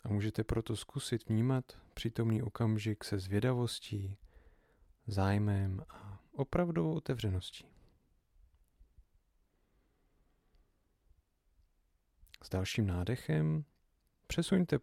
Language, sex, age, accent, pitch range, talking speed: Czech, male, 40-59, native, 90-115 Hz, 70 wpm